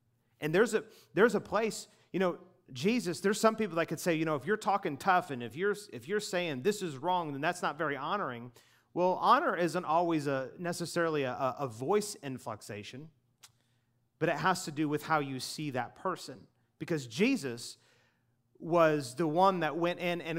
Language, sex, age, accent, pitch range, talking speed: English, male, 30-49, American, 145-200 Hz, 190 wpm